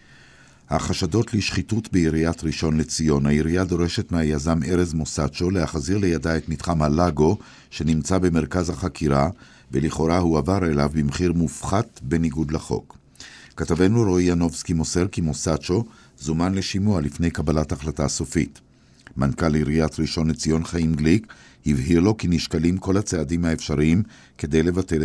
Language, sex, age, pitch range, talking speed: Hebrew, male, 50-69, 75-90 Hz, 125 wpm